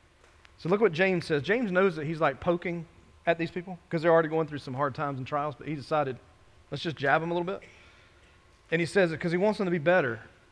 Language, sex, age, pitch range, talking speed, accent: English, male, 40-59, 120-175 Hz, 255 wpm, American